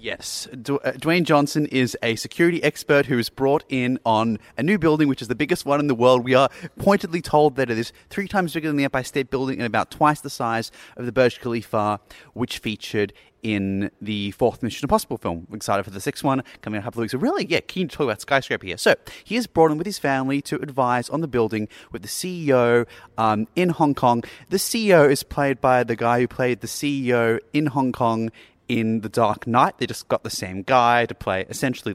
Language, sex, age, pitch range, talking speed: English, male, 30-49, 115-145 Hz, 235 wpm